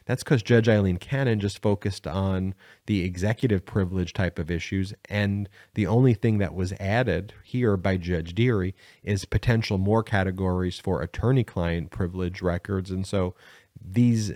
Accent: American